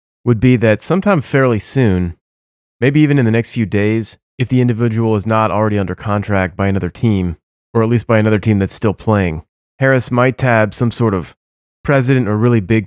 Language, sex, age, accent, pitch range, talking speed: English, male, 30-49, American, 95-120 Hz, 200 wpm